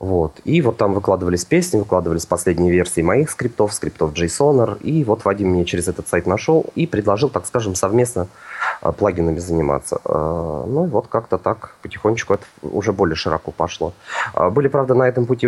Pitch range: 90-120 Hz